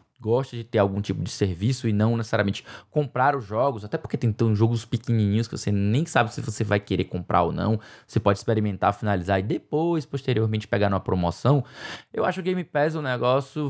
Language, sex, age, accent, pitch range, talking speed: Portuguese, male, 20-39, Brazilian, 115-155 Hz, 205 wpm